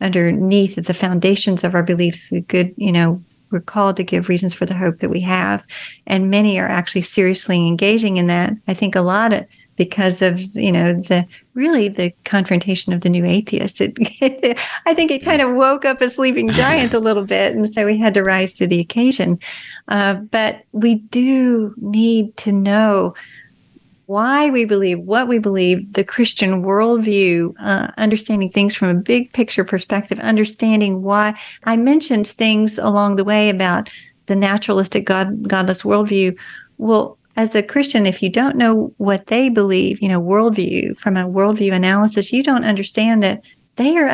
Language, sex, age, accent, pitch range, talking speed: English, female, 40-59, American, 185-220 Hz, 175 wpm